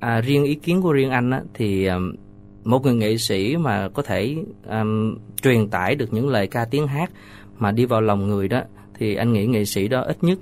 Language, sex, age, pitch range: Vietnamese, male, 20-39, 100-140 Hz